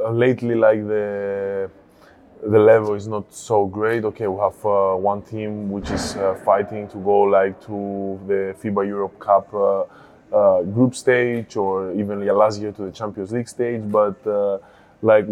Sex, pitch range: male, 95-105 Hz